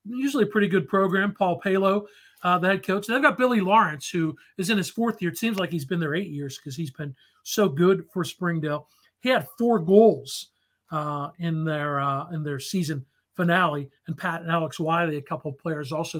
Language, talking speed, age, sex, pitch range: English, 220 wpm, 40-59, male, 155-200 Hz